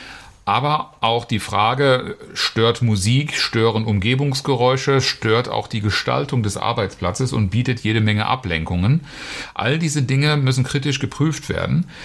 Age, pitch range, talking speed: 40-59, 105-130 Hz, 130 wpm